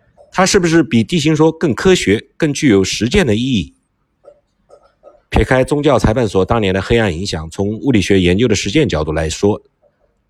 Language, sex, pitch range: Chinese, male, 95-125 Hz